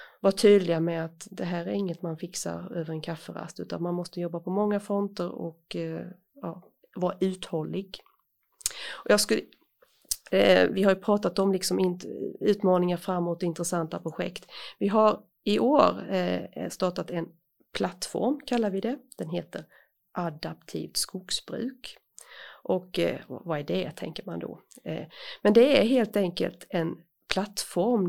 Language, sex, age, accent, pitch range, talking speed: Swedish, female, 30-49, native, 170-210 Hz, 140 wpm